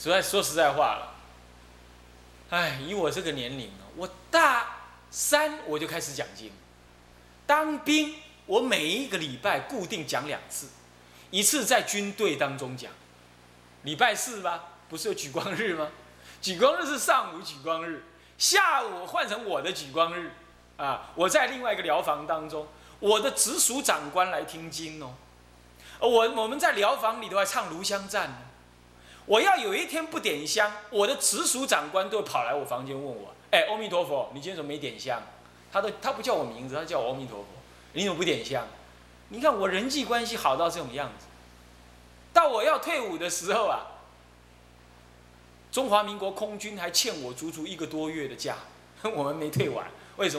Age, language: 30-49, Chinese